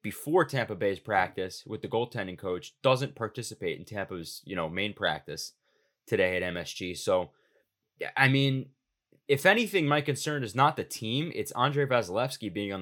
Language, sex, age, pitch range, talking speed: English, male, 20-39, 100-135 Hz, 165 wpm